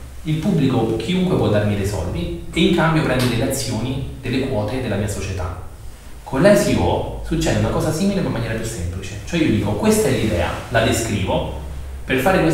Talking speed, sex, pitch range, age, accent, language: 180 wpm, male, 95-140 Hz, 30-49, native, Italian